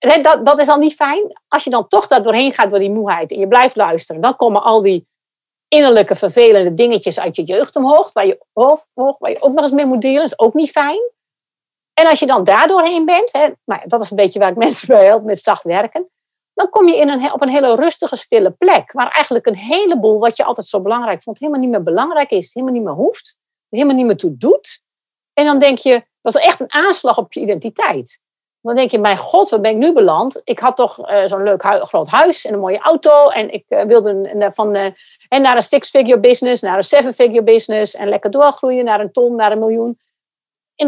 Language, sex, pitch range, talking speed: Dutch, female, 210-295 Hz, 245 wpm